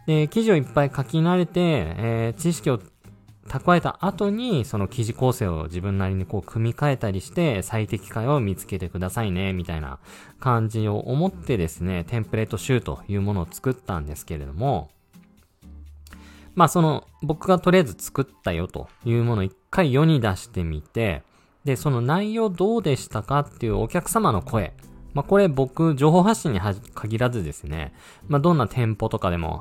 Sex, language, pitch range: male, Japanese, 95-145 Hz